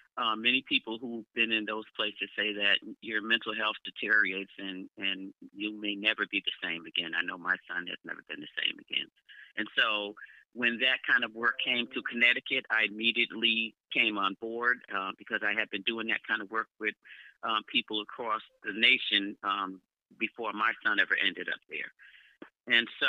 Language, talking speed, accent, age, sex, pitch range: English, 190 wpm, American, 40-59, male, 105-115 Hz